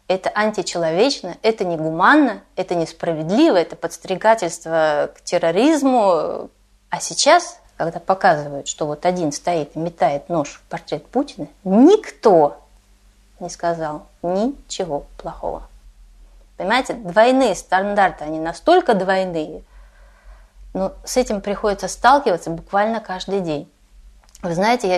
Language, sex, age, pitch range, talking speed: Russian, female, 30-49, 170-220 Hz, 110 wpm